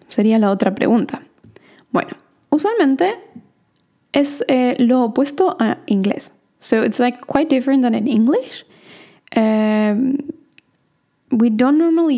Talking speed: 115 wpm